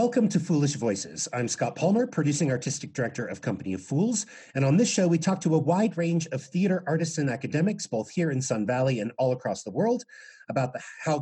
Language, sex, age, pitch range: English, male, 40-59, 125-190 Hz